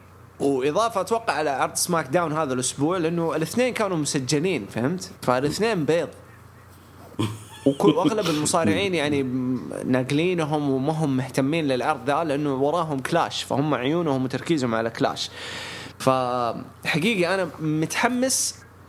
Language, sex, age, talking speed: English, male, 20-39, 110 wpm